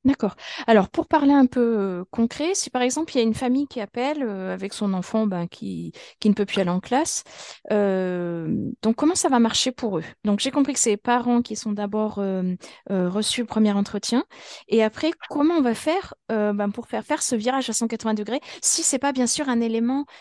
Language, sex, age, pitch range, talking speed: French, female, 20-39, 210-255 Hz, 235 wpm